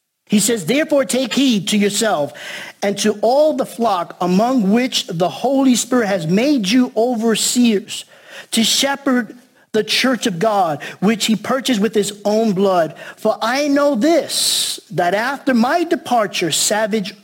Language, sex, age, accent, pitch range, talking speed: English, male, 50-69, American, 165-220 Hz, 150 wpm